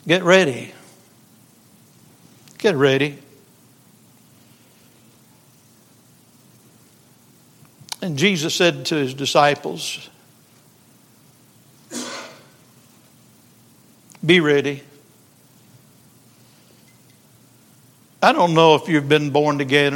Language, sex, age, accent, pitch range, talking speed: English, male, 60-79, American, 140-175 Hz, 60 wpm